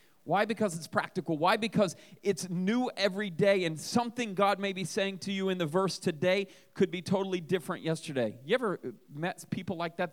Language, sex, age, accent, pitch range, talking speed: English, male, 30-49, American, 155-195 Hz, 195 wpm